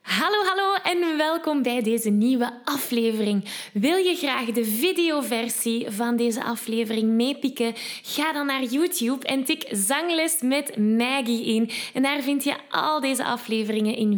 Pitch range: 225-305 Hz